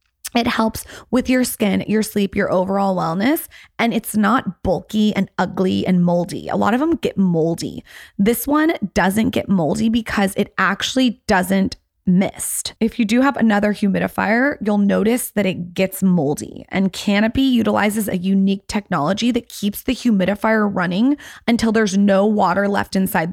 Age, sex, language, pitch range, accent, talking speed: 20-39, female, English, 190-225 Hz, American, 160 wpm